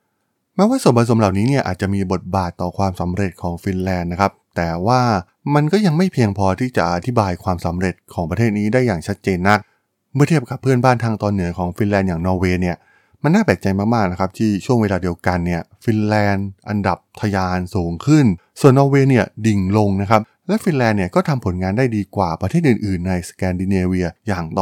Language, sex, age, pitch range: Thai, male, 20-39, 95-125 Hz